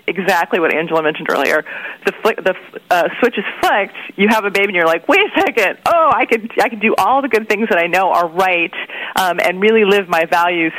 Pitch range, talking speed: 165-205 Hz, 245 wpm